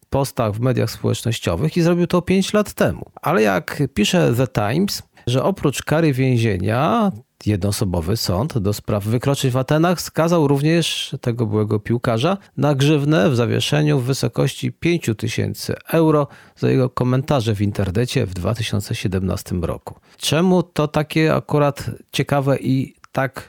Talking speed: 140 wpm